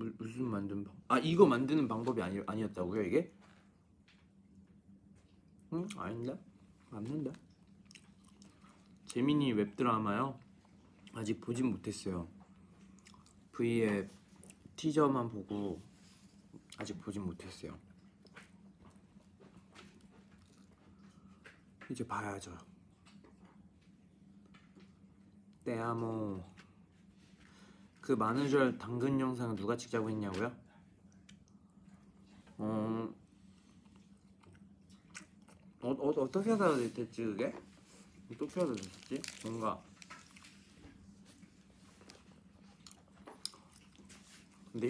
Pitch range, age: 100-135 Hz, 40-59